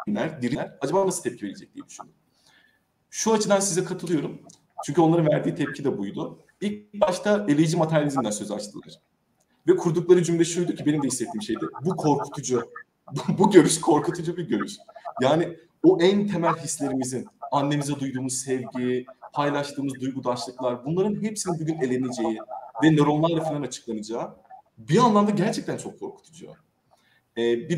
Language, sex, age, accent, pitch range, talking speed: Turkish, male, 30-49, native, 130-180 Hz, 135 wpm